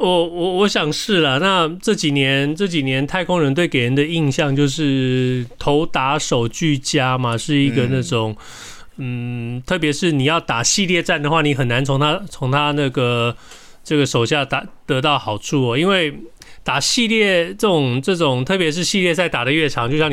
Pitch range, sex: 130-165 Hz, male